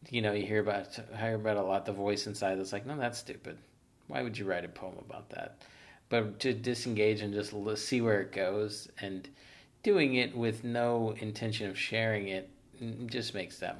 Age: 40-59